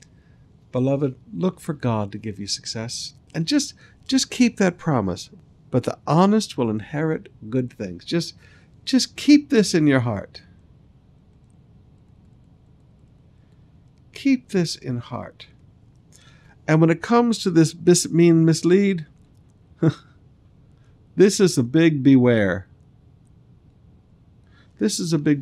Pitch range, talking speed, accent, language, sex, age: 120-165 Hz, 120 wpm, American, English, male, 60-79